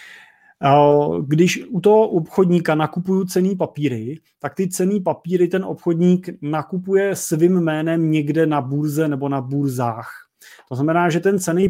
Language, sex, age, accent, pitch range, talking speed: Czech, male, 30-49, native, 140-160 Hz, 140 wpm